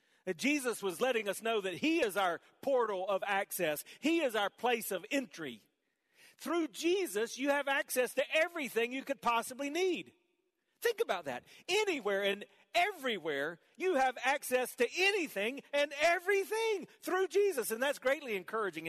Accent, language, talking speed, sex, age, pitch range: American, English, 155 wpm, male, 40-59, 170-270 Hz